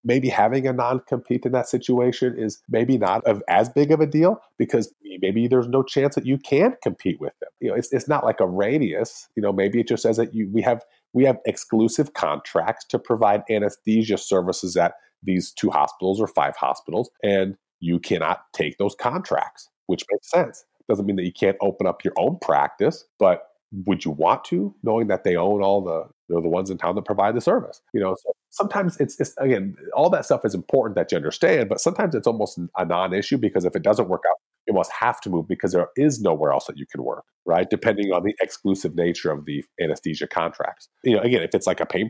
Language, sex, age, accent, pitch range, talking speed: English, male, 30-49, American, 95-130 Hz, 225 wpm